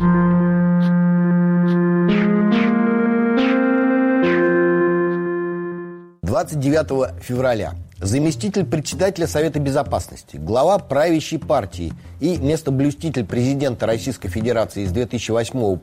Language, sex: Russian, male